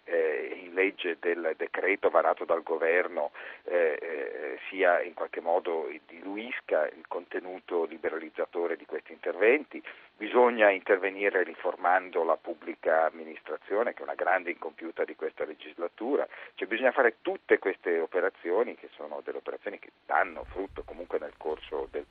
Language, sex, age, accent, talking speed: Italian, male, 40-59, native, 140 wpm